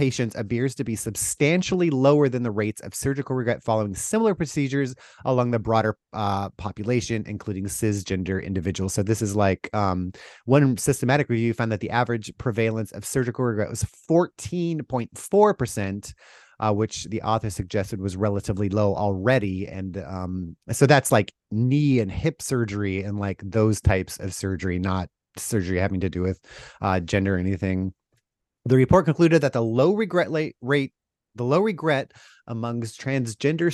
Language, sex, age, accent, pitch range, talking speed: English, male, 30-49, American, 100-135 Hz, 155 wpm